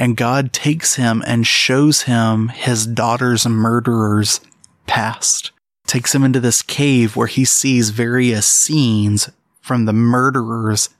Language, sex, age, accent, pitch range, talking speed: English, male, 20-39, American, 115-150 Hz, 130 wpm